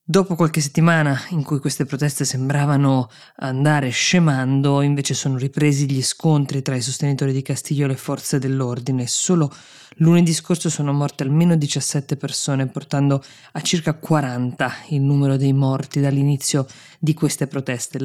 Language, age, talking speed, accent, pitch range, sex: Italian, 20-39, 145 wpm, native, 135-155 Hz, female